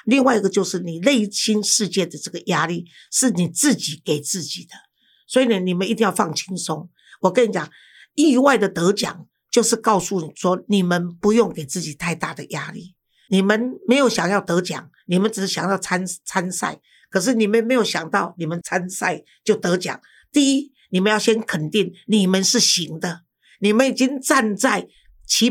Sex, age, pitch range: female, 50-69, 175-230 Hz